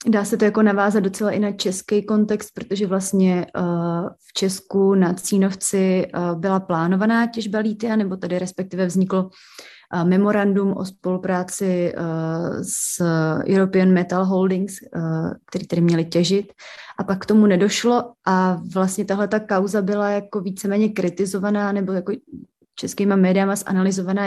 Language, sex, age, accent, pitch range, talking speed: Czech, female, 30-49, native, 185-210 Hz, 145 wpm